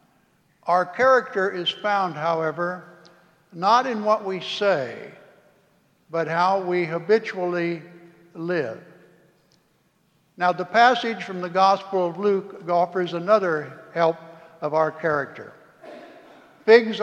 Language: English